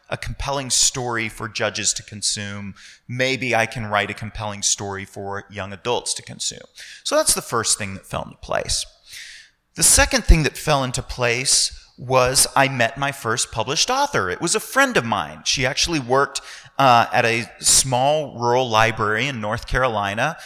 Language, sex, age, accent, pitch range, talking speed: English, male, 30-49, American, 115-140 Hz, 175 wpm